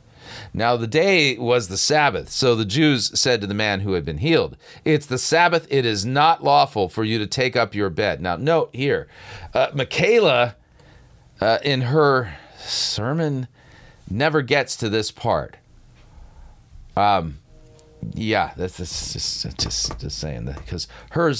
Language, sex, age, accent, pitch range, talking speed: English, male, 40-59, American, 100-135 Hz, 160 wpm